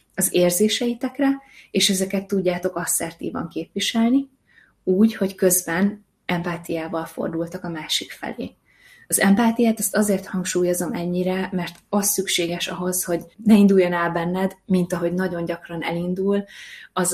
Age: 20-39